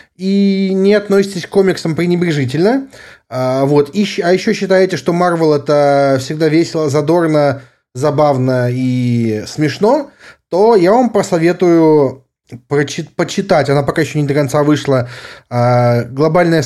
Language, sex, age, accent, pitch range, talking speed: Russian, male, 20-39, native, 145-195 Hz, 125 wpm